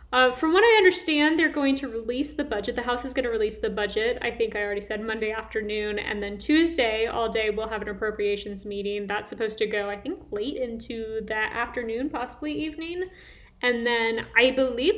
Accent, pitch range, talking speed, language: American, 205-260 Hz, 210 wpm, English